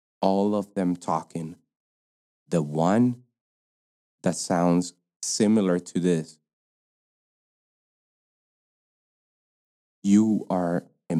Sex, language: male, English